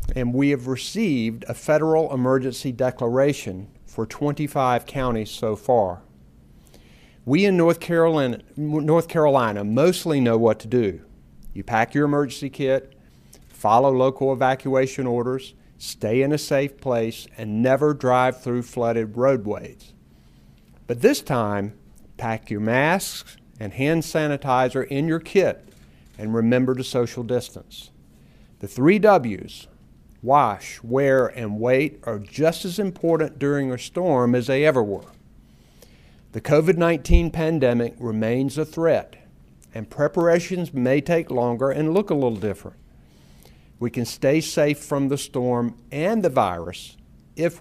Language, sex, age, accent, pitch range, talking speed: English, male, 50-69, American, 110-150 Hz, 135 wpm